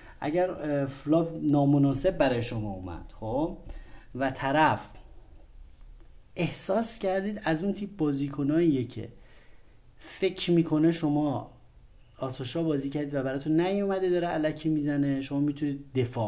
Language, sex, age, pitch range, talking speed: Persian, male, 30-49, 110-150 Hz, 115 wpm